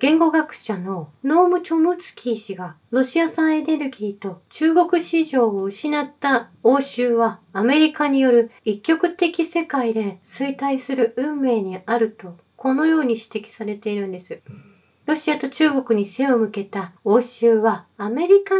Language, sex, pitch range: Japanese, female, 210-320 Hz